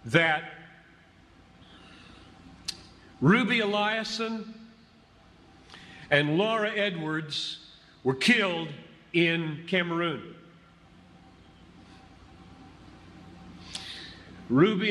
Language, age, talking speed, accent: English, 50-69, 45 wpm, American